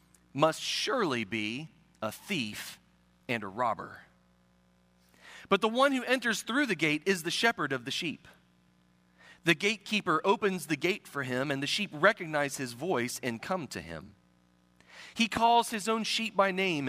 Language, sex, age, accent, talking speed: English, male, 40-59, American, 165 wpm